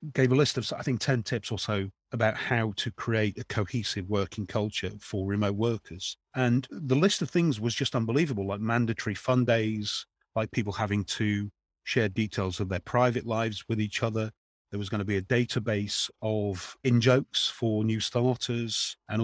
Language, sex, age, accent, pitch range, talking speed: English, male, 40-59, British, 100-125 Hz, 185 wpm